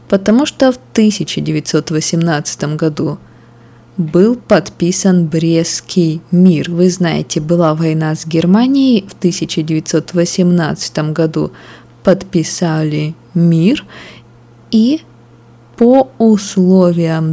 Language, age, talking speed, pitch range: Russian, 20-39, 80 wpm, 160-200 Hz